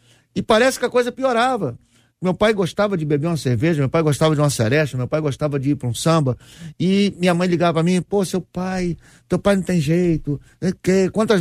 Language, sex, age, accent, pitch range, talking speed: Portuguese, male, 50-69, Brazilian, 120-195 Hz, 220 wpm